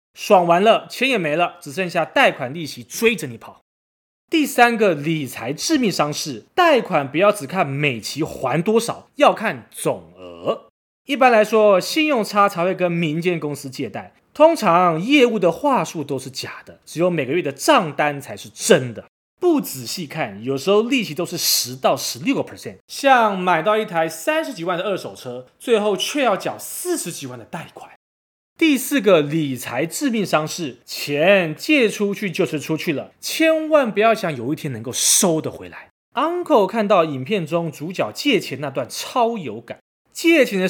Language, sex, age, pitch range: Chinese, male, 30-49, 145-225 Hz